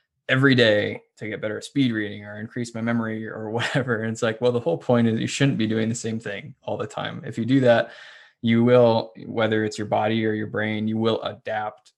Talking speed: 240 wpm